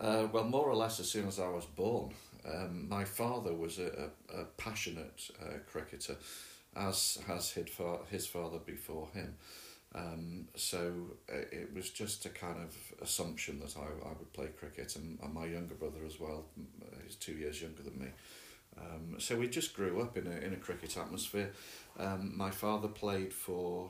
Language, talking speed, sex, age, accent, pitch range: English, 180 wpm, male, 40-59, British, 85-100 Hz